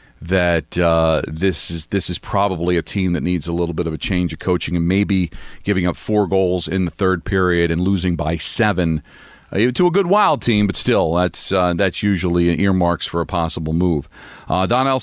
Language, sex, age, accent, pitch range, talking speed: English, male, 40-59, American, 95-120 Hz, 210 wpm